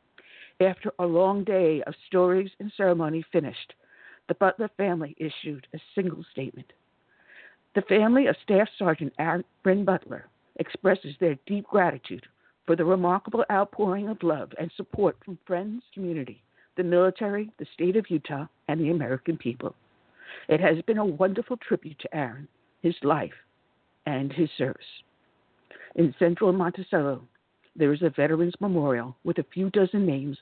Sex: female